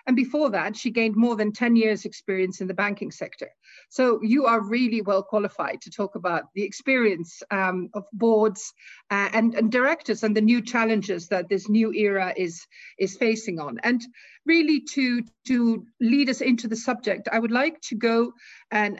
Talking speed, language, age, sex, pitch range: 185 wpm, English, 50-69, female, 205-250 Hz